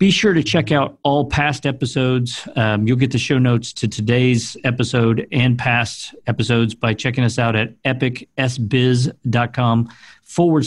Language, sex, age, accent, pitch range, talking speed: English, male, 50-69, American, 115-140 Hz, 150 wpm